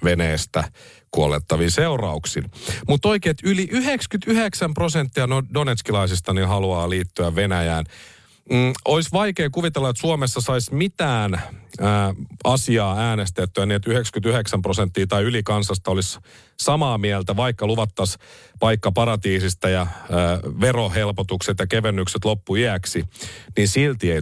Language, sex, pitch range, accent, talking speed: Finnish, male, 95-135 Hz, native, 110 wpm